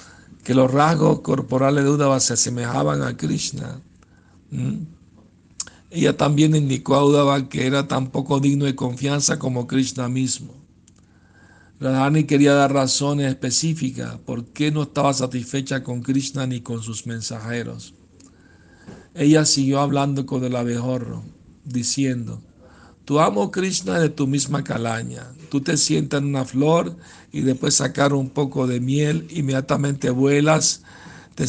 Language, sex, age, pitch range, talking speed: Spanish, male, 60-79, 120-140 Hz, 140 wpm